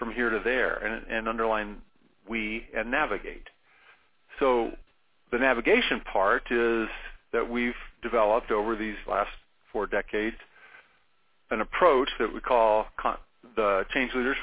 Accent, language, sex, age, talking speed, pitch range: American, English, male, 50-69, 135 wpm, 110-130 Hz